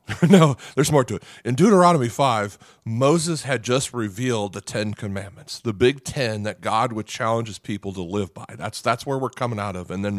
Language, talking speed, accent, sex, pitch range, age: English, 210 wpm, American, male, 100-135 Hz, 40-59